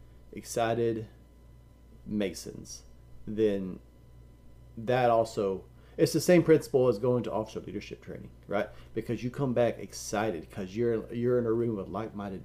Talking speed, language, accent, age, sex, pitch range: 135 wpm, English, American, 30-49, male, 95-135 Hz